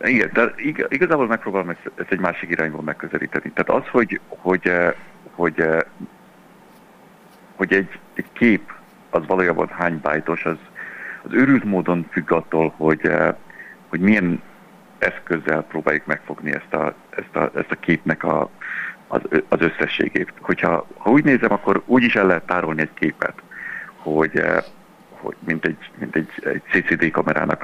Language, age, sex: Hungarian, 60-79, male